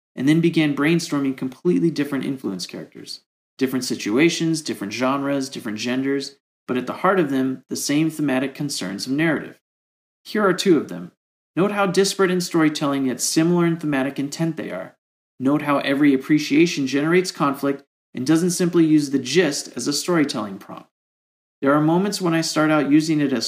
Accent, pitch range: American, 130-160 Hz